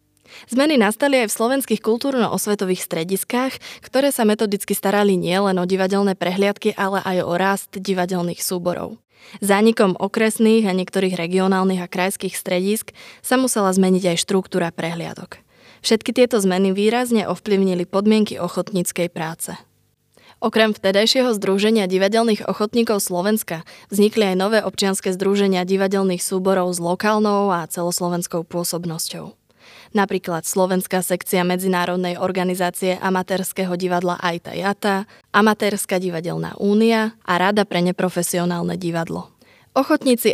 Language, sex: Slovak, female